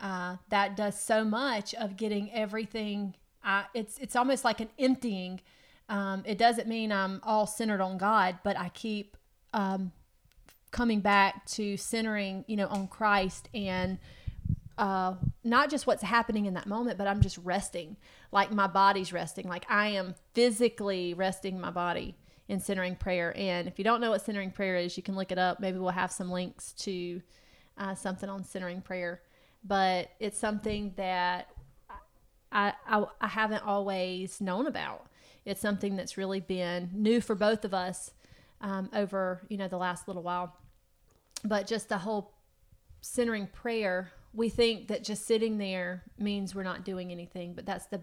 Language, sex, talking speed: English, female, 170 wpm